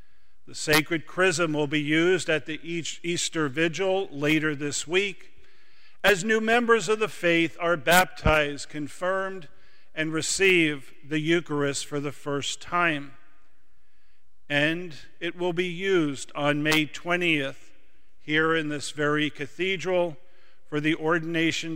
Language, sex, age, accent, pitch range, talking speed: English, male, 50-69, American, 145-180 Hz, 125 wpm